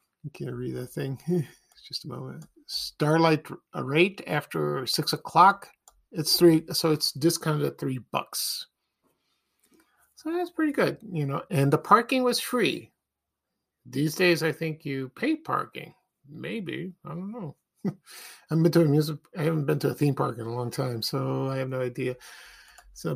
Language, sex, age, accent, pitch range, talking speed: English, male, 50-69, American, 140-185 Hz, 165 wpm